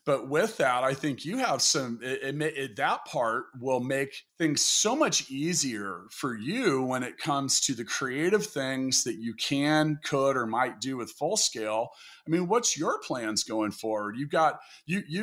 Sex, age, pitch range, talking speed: male, 40-59, 120-165 Hz, 190 wpm